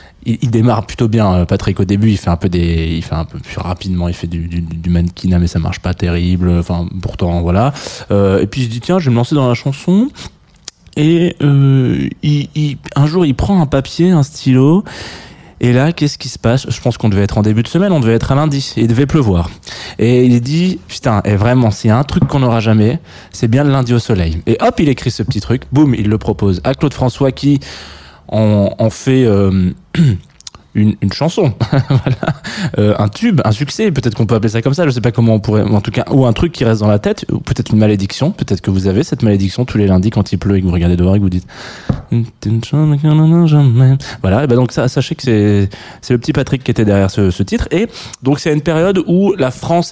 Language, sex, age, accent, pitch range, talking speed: French, male, 20-39, French, 100-140 Hz, 250 wpm